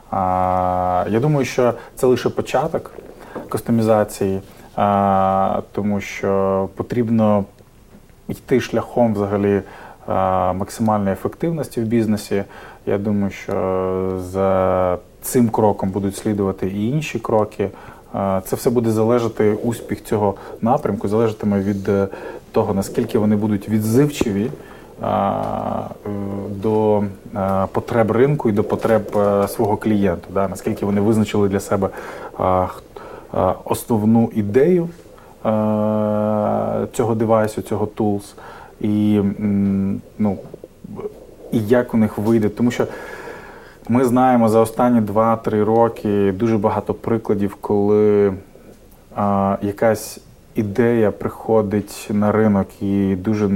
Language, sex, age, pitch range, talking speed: Russian, male, 20-39, 100-115 Hz, 100 wpm